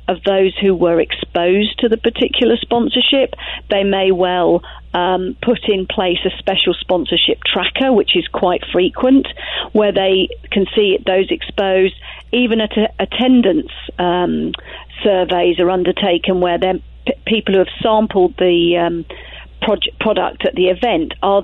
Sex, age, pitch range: female, 40-59, 180-215 Hz